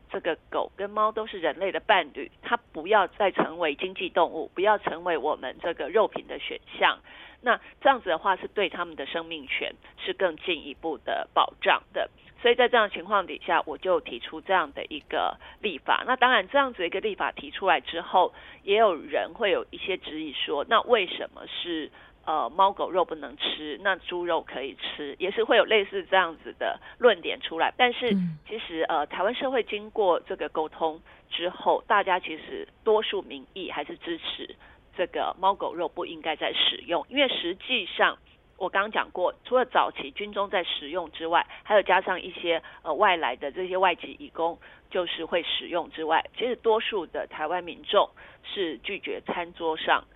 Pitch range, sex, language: 170-255 Hz, female, Korean